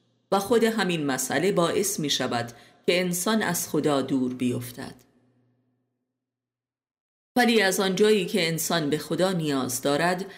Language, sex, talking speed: Persian, female, 125 wpm